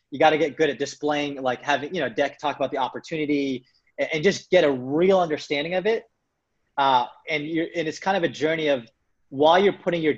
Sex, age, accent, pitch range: male, 30-49, American, 140-170 Hz